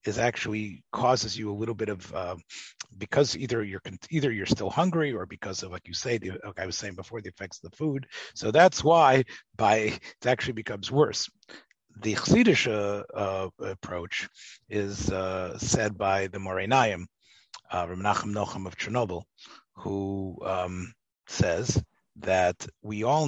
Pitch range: 95-115 Hz